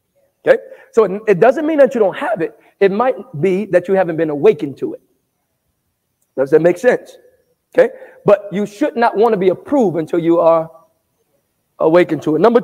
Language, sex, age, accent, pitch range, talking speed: English, male, 40-59, American, 165-240 Hz, 195 wpm